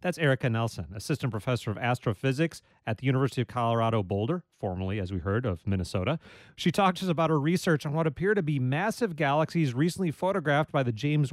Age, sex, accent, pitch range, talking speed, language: 30-49, male, American, 130-175 Hz, 190 wpm, English